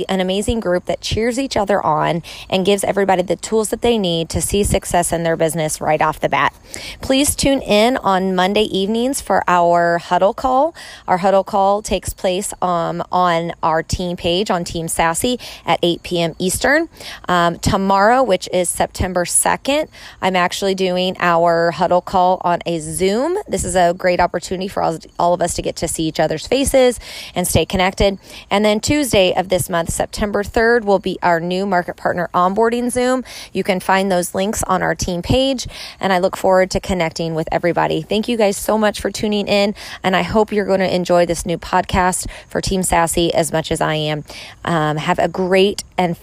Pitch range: 170-195 Hz